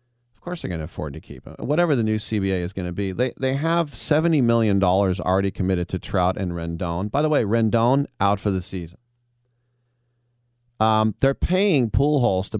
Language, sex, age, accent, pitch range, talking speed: English, male, 40-59, American, 95-120 Hz, 200 wpm